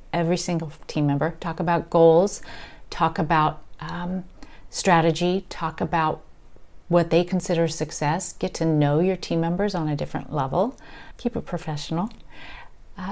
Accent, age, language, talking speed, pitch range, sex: American, 40-59, English, 140 wpm, 165-210 Hz, female